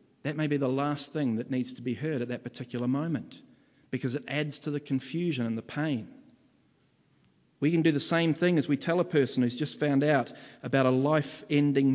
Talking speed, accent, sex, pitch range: 210 wpm, Australian, male, 125-155 Hz